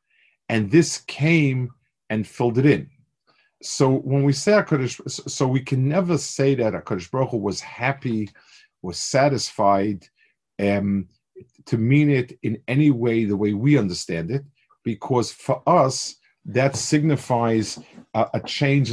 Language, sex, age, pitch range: English, male, 50-69, 110-150 Hz